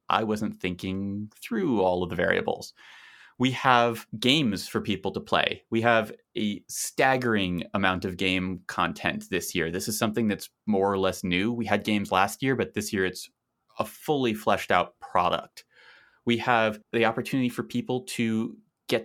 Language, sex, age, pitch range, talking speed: English, male, 30-49, 95-125 Hz, 175 wpm